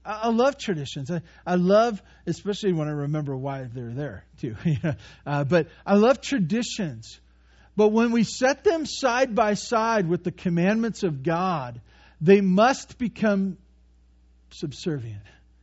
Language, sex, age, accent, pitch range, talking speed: English, male, 50-69, American, 125-185 Hz, 140 wpm